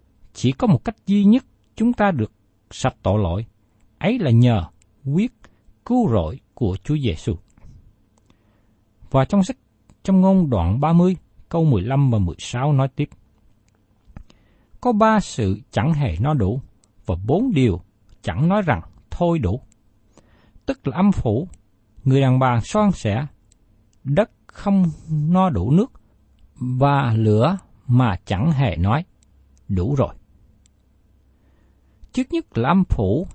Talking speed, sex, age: 140 wpm, male, 60-79